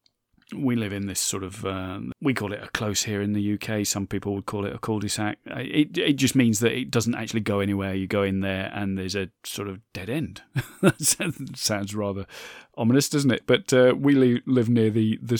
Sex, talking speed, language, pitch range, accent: male, 220 wpm, English, 100-130 Hz, British